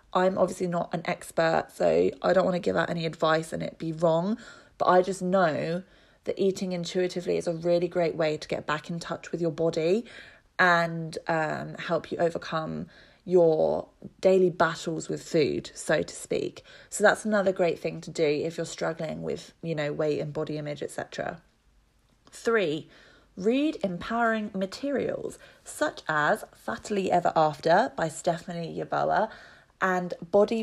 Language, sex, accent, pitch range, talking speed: English, female, British, 165-190 Hz, 165 wpm